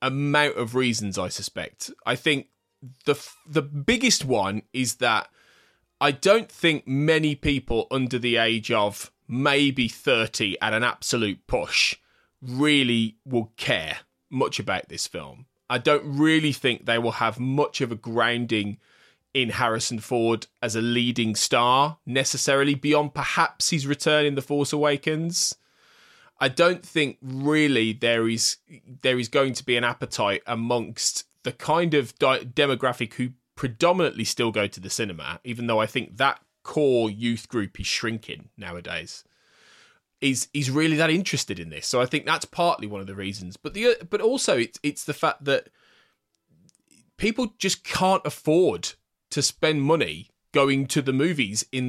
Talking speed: 155 wpm